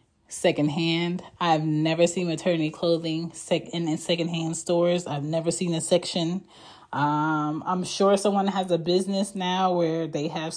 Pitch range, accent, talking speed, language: 155-190 Hz, American, 150 wpm, English